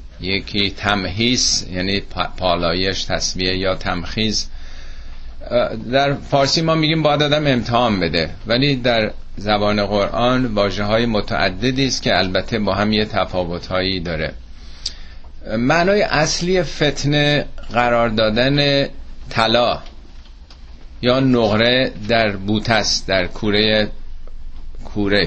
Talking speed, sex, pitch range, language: 100 wpm, male, 90-130 Hz, Persian